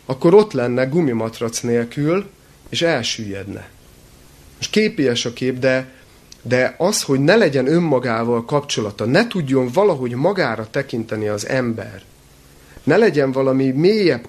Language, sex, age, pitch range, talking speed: Hungarian, male, 30-49, 105-145 Hz, 125 wpm